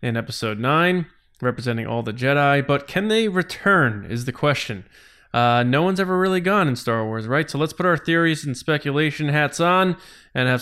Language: English